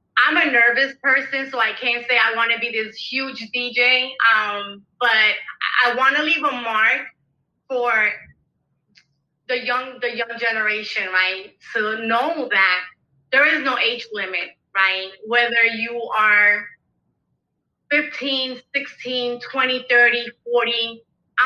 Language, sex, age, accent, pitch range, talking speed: English, female, 20-39, American, 215-260 Hz, 115 wpm